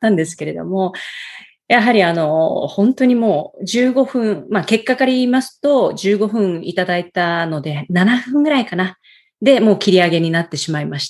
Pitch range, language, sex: 155-220 Hz, Japanese, female